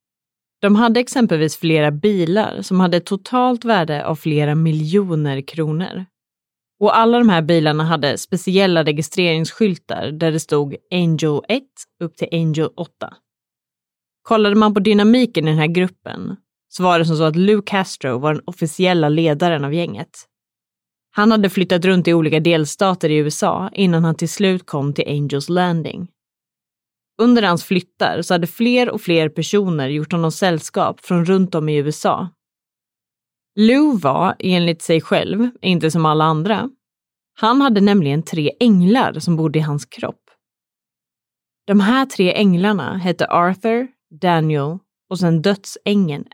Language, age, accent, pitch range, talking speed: Swedish, 30-49, native, 160-210 Hz, 150 wpm